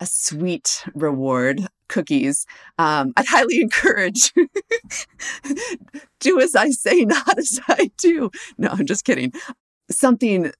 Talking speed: 120 wpm